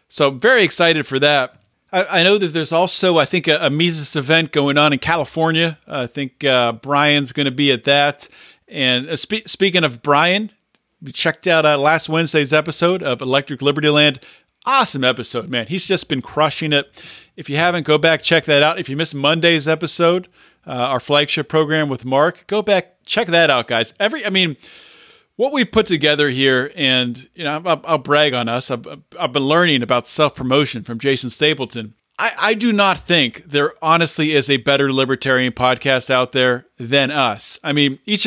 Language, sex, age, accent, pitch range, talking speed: English, male, 40-59, American, 135-170 Hz, 195 wpm